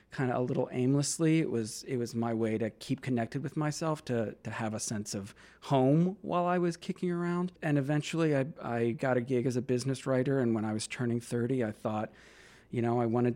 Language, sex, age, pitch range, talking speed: English, male, 40-59, 115-140 Hz, 230 wpm